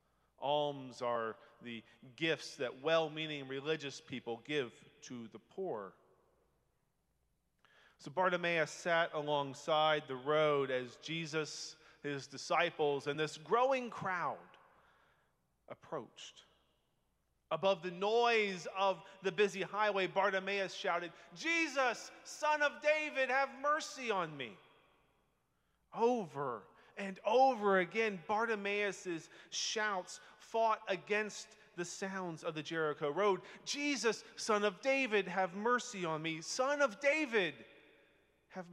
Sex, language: male, English